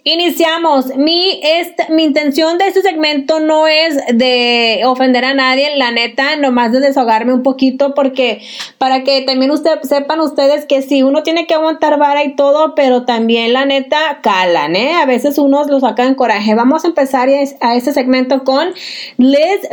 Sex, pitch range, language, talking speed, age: female, 255-300 Hz, Spanish, 175 wpm, 30-49